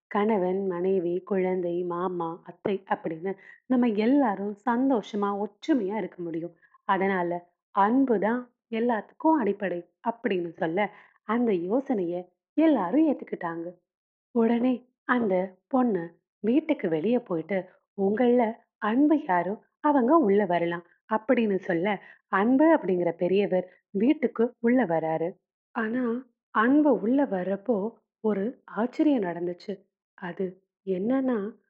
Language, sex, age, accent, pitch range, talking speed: Tamil, female, 30-49, native, 185-240 Hz, 90 wpm